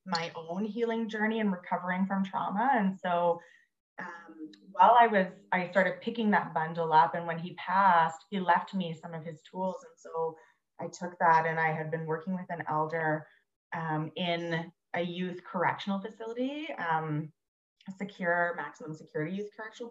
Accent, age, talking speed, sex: American, 20-39, 170 wpm, female